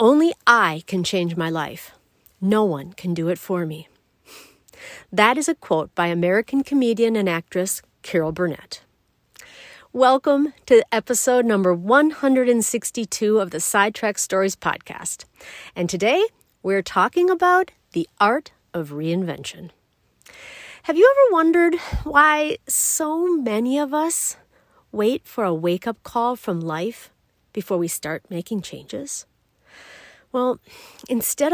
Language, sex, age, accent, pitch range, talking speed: English, female, 40-59, American, 185-270 Hz, 125 wpm